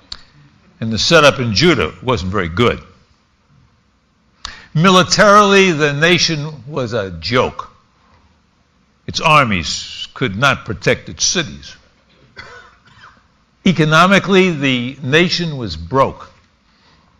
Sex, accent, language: male, American, English